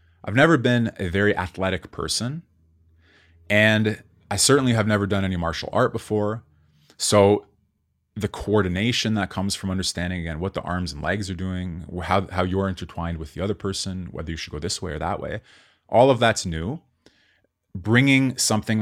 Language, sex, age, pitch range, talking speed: English, male, 20-39, 90-110 Hz, 175 wpm